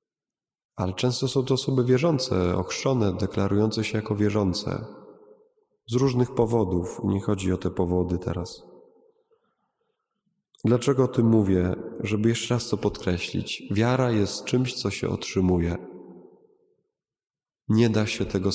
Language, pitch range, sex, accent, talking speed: Polish, 100-135 Hz, male, native, 125 wpm